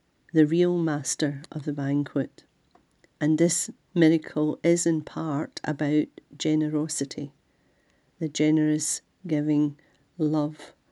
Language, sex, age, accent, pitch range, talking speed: English, female, 40-59, British, 150-170 Hz, 100 wpm